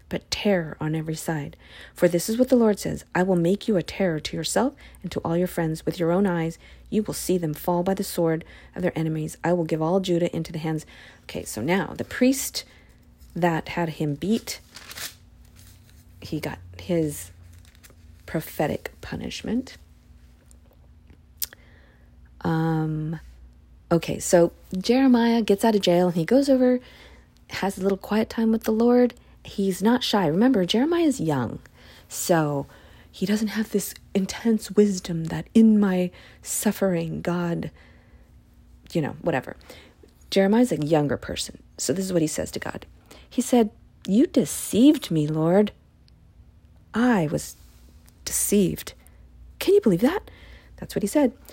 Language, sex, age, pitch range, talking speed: English, female, 40-59, 140-210 Hz, 155 wpm